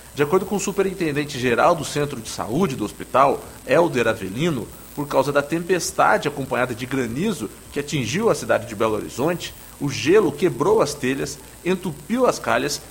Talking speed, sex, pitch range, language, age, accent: 165 wpm, male, 125-160 Hz, English, 40-59, Brazilian